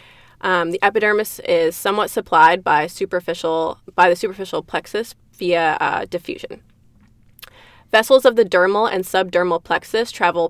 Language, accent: English, American